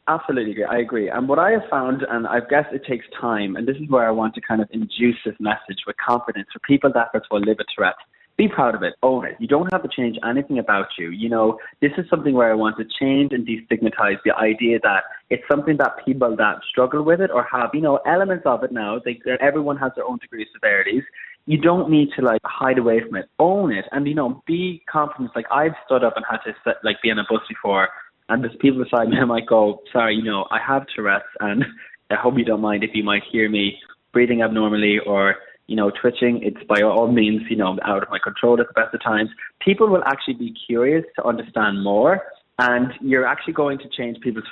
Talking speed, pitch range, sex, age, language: 240 wpm, 110-140 Hz, male, 20-39, English